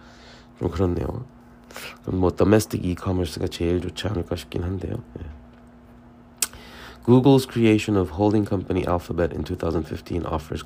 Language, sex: Korean, male